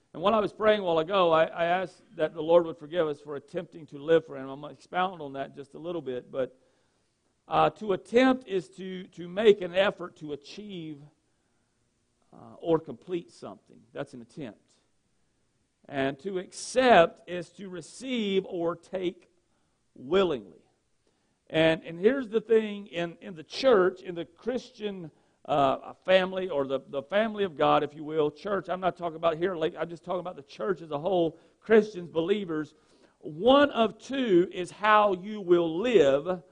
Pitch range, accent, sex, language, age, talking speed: 160-210 Hz, American, male, English, 50-69, 180 wpm